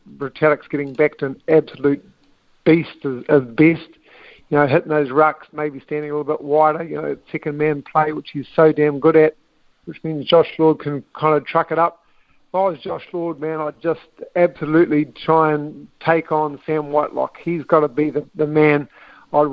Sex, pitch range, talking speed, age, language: male, 150-165 Hz, 200 wpm, 50-69, English